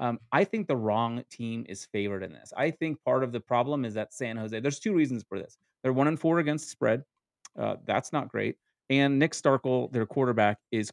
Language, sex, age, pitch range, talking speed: English, male, 30-49, 110-135 Hz, 230 wpm